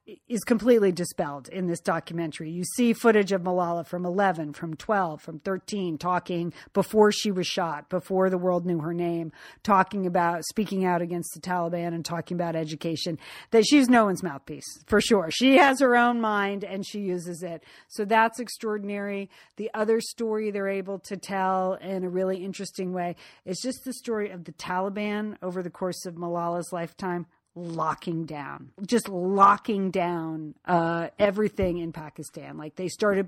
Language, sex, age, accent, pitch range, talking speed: English, female, 40-59, American, 170-215 Hz, 170 wpm